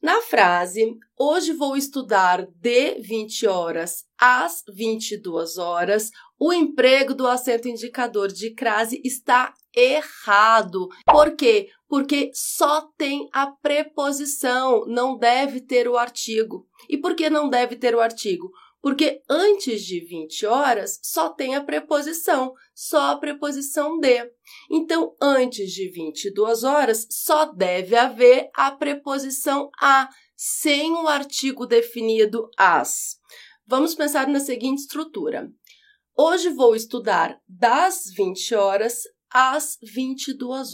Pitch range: 230-305 Hz